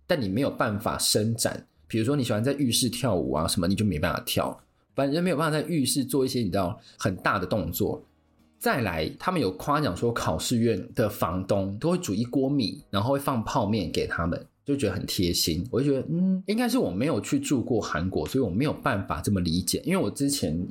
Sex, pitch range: male, 95-140 Hz